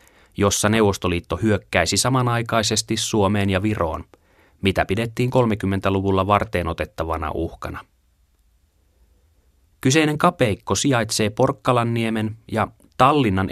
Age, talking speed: 30-49, 80 wpm